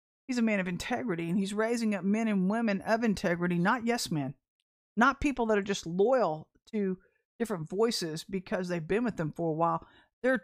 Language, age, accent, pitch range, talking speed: English, 50-69, American, 180-245 Hz, 200 wpm